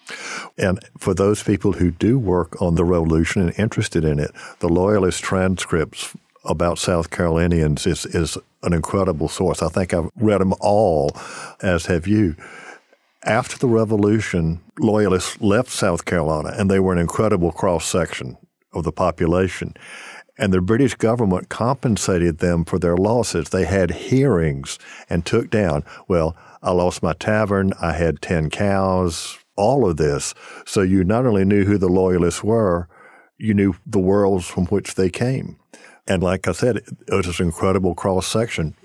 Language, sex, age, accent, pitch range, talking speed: English, male, 50-69, American, 85-105 Hz, 160 wpm